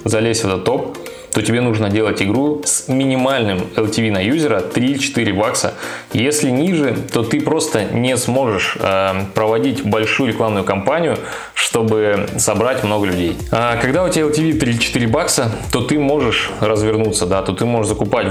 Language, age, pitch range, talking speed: Russian, 20-39, 105-135 Hz, 150 wpm